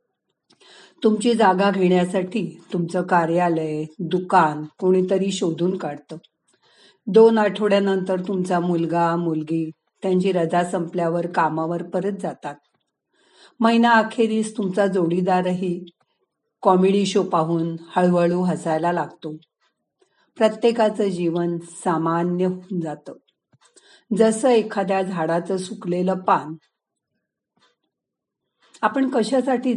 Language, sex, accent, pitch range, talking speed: Marathi, female, native, 170-210 Hz, 50 wpm